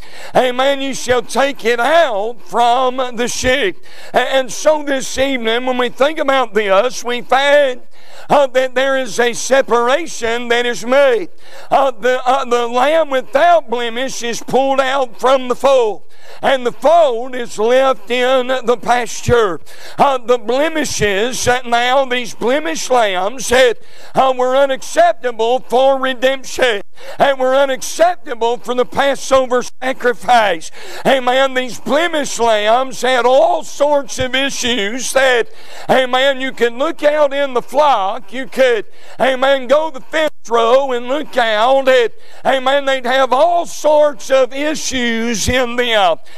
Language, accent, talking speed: English, American, 140 wpm